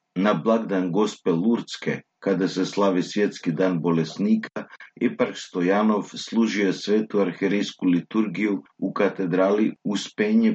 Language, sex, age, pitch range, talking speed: Croatian, male, 50-69, 90-125 Hz, 110 wpm